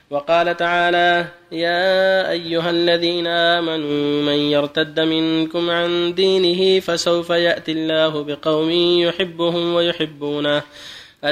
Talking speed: 90 wpm